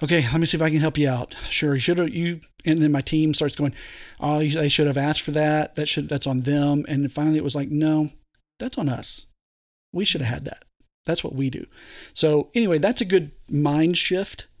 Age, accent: 40-59, American